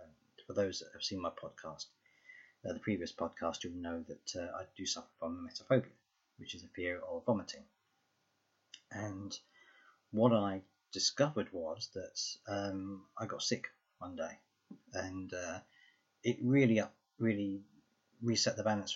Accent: British